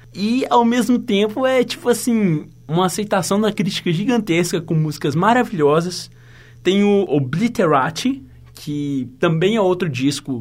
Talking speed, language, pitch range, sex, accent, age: 135 wpm, Portuguese, 145-200 Hz, male, Brazilian, 20-39